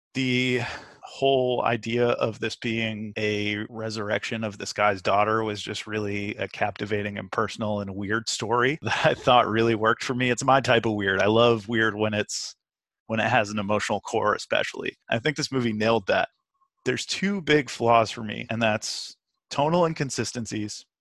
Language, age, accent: English, 30-49, American